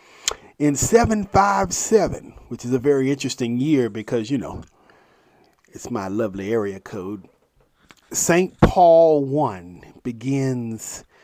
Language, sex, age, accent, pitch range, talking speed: English, male, 40-59, American, 120-155 Hz, 105 wpm